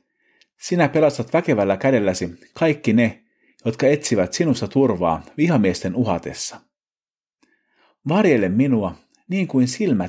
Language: Finnish